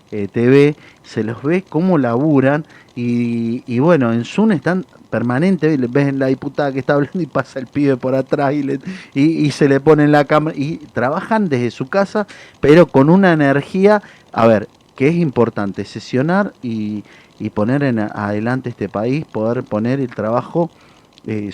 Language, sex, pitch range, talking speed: Spanish, male, 110-145 Hz, 175 wpm